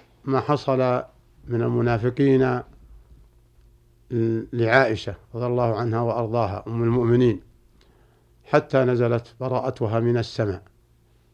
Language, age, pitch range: Arabic, 50-69, 115-130 Hz